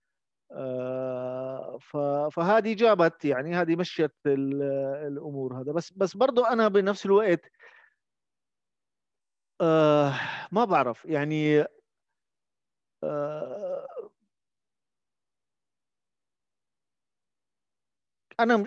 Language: Arabic